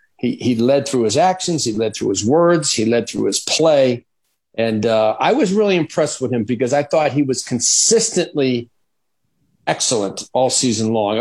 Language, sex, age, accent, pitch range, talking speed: English, male, 40-59, American, 125-165 Hz, 180 wpm